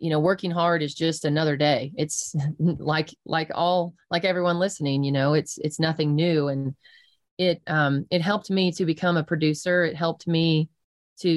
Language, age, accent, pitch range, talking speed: English, 30-49, American, 145-170 Hz, 185 wpm